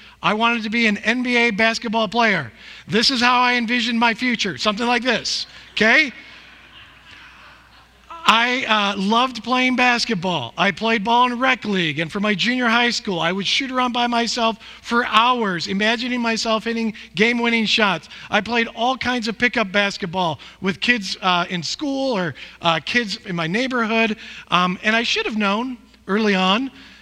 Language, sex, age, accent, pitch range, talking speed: English, male, 50-69, American, 190-240 Hz, 165 wpm